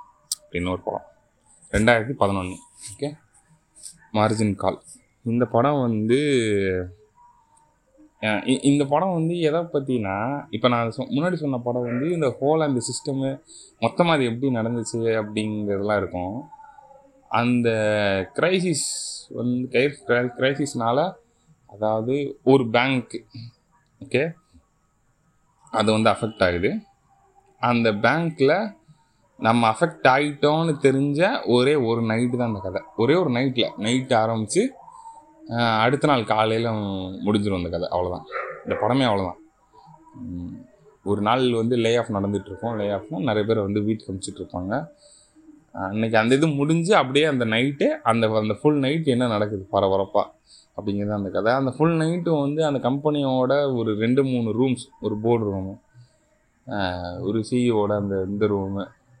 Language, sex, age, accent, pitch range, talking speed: Tamil, male, 20-39, native, 105-145 Hz, 90 wpm